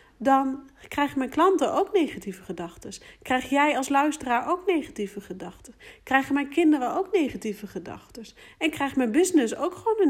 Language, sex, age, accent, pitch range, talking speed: Dutch, female, 40-59, Dutch, 230-305 Hz, 160 wpm